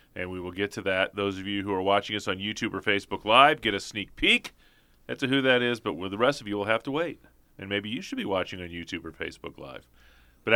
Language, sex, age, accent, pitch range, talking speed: English, male, 30-49, American, 100-135 Hz, 265 wpm